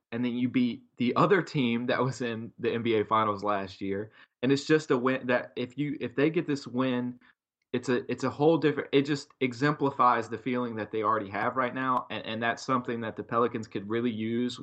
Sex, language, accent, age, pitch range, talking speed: male, English, American, 20-39, 110-130 Hz, 230 wpm